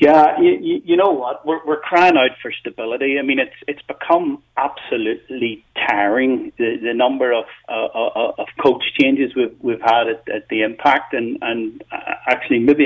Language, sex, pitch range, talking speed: English, male, 120-170 Hz, 175 wpm